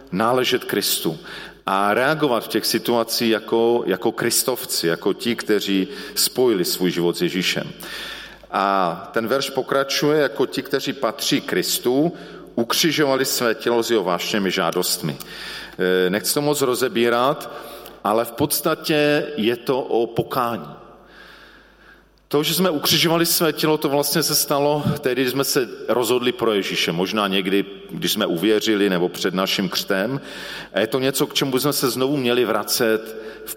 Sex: male